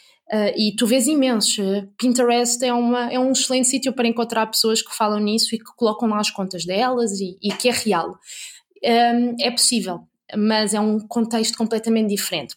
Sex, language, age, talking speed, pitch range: female, Portuguese, 20-39, 170 wpm, 210-245 Hz